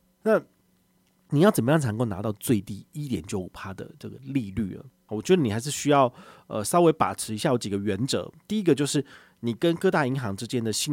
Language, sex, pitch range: Chinese, male, 105-140 Hz